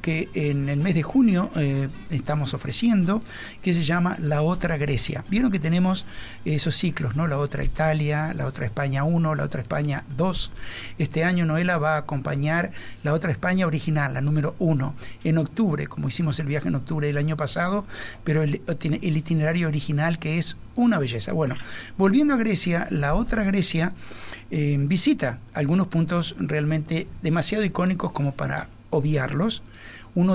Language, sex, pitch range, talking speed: Spanish, male, 140-175 Hz, 165 wpm